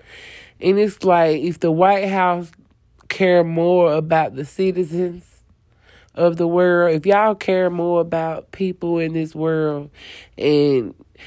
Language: English